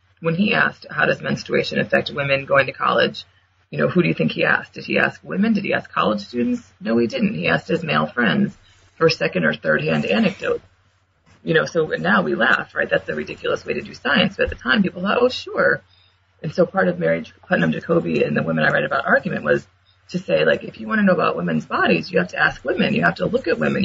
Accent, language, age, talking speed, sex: American, English, 30-49, 250 wpm, female